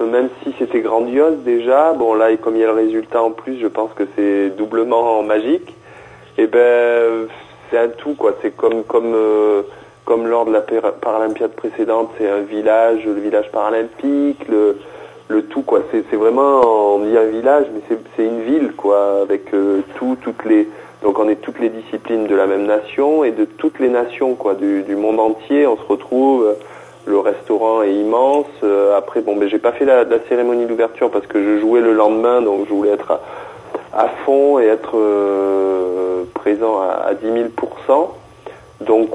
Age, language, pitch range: 30-49, French, 105-120 Hz